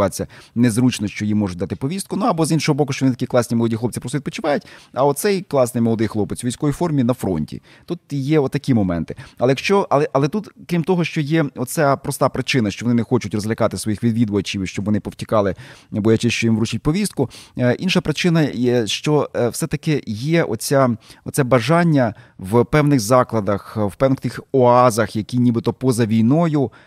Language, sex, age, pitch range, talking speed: Ukrainian, male, 30-49, 105-135 Hz, 175 wpm